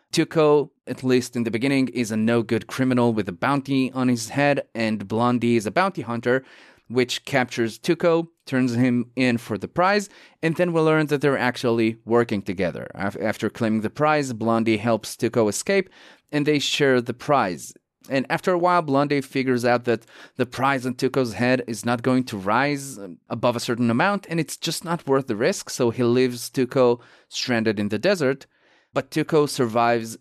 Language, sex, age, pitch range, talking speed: English, male, 30-49, 115-140 Hz, 185 wpm